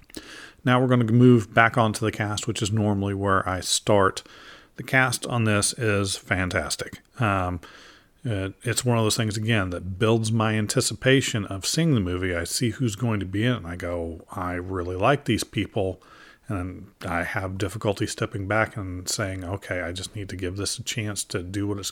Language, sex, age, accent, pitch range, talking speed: English, male, 40-59, American, 95-115 Hz, 205 wpm